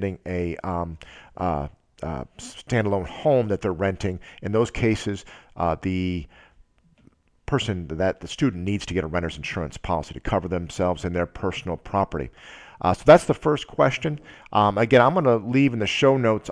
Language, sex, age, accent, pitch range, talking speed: English, male, 50-69, American, 90-115 Hz, 165 wpm